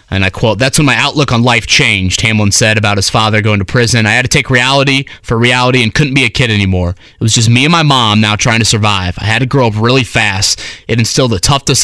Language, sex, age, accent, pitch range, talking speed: English, male, 30-49, American, 100-125 Hz, 270 wpm